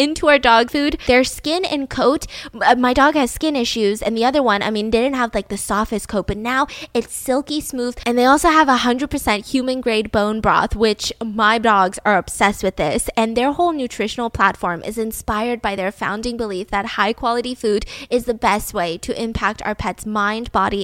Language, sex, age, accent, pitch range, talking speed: English, female, 10-29, American, 200-255 Hz, 210 wpm